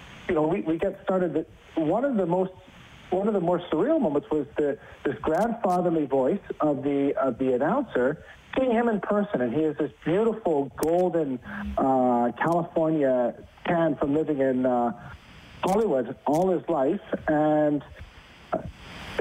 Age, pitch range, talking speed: 50-69, 145-195 Hz, 155 wpm